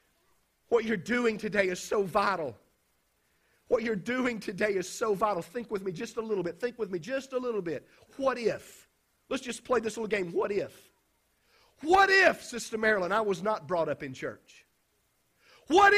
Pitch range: 220-300 Hz